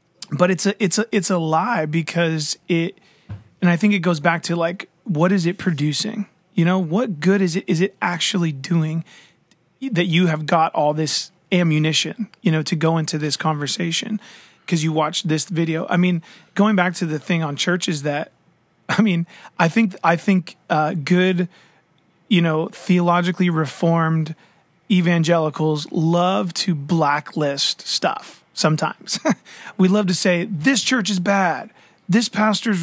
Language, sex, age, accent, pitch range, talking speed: English, male, 30-49, American, 165-205 Hz, 165 wpm